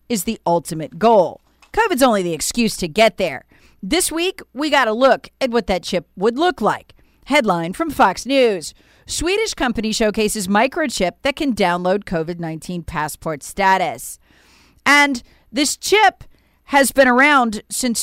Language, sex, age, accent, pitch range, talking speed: English, female, 40-59, American, 185-270 Hz, 155 wpm